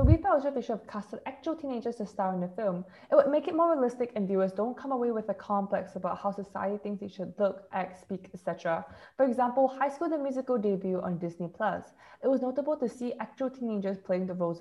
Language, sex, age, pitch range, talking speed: English, female, 10-29, 190-250 Hz, 240 wpm